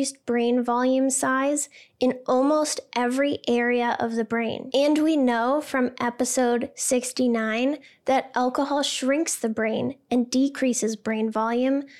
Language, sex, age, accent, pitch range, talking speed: English, female, 10-29, American, 235-270 Hz, 125 wpm